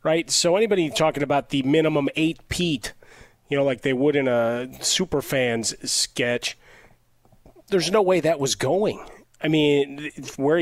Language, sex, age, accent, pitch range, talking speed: English, male, 30-49, American, 115-145 Hz, 160 wpm